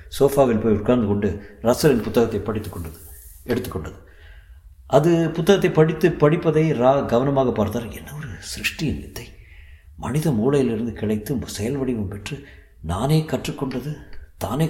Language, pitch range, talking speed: Tamil, 85-120 Hz, 115 wpm